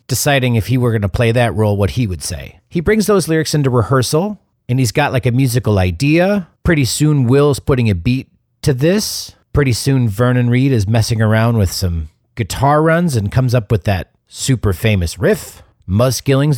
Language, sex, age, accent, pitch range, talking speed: English, male, 40-59, American, 100-130 Hz, 200 wpm